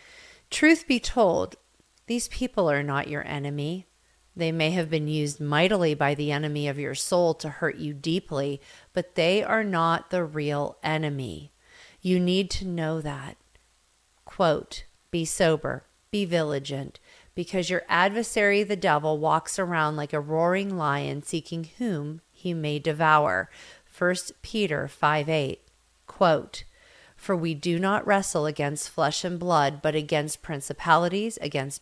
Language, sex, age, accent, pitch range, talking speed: English, female, 40-59, American, 150-185 Hz, 145 wpm